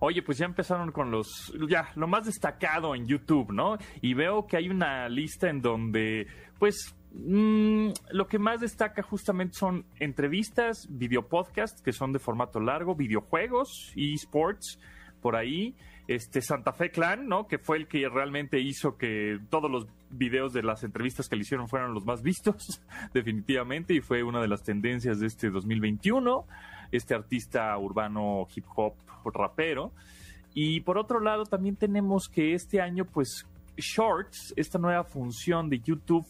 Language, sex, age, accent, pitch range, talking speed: Spanish, male, 30-49, Mexican, 120-180 Hz, 160 wpm